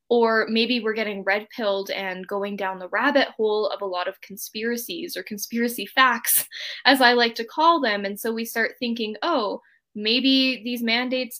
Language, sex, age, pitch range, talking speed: English, female, 10-29, 210-260 Hz, 180 wpm